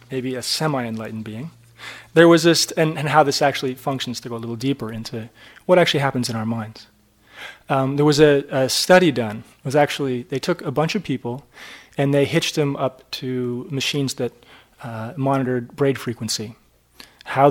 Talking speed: 185 wpm